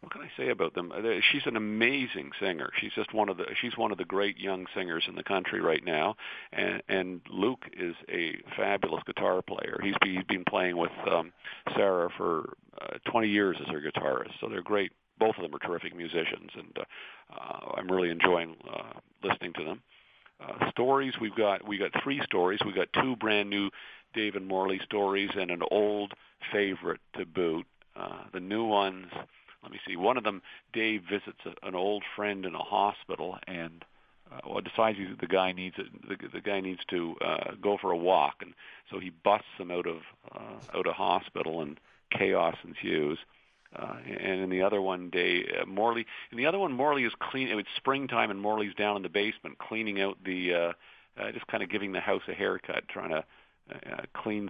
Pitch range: 90-105 Hz